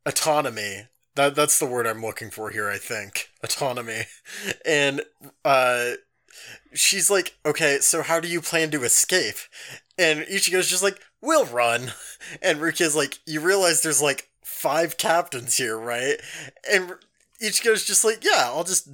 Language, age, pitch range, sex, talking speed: English, 20-39, 145-195 Hz, male, 150 wpm